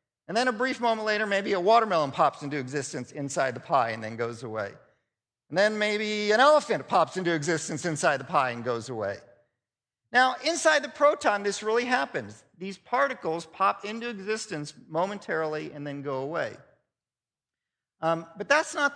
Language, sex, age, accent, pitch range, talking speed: English, male, 50-69, American, 130-200 Hz, 170 wpm